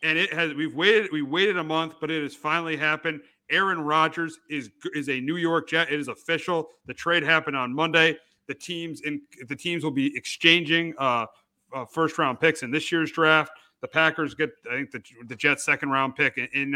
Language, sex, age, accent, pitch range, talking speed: English, male, 40-59, American, 155-180 Hz, 215 wpm